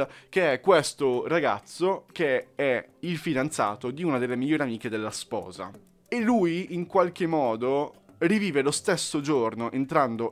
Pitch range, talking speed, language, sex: 115-155 Hz, 145 wpm, Italian, male